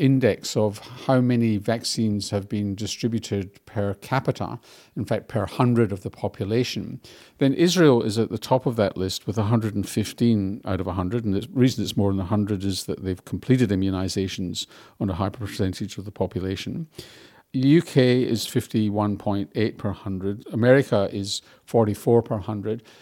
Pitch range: 100-120 Hz